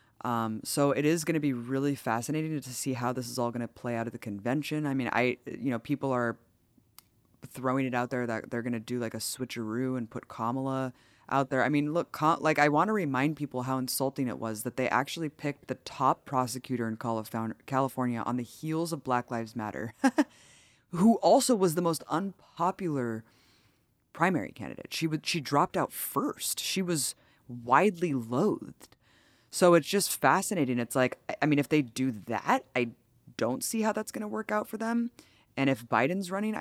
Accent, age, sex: American, 20-39, female